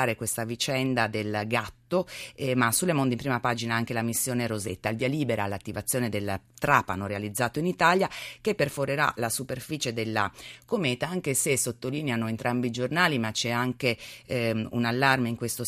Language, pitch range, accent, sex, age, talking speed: Italian, 110-135 Hz, native, female, 30-49, 170 wpm